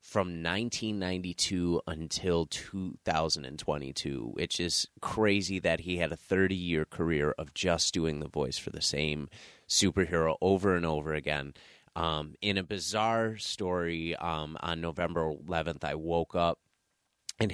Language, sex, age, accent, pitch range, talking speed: English, male, 30-49, American, 75-90 Hz, 135 wpm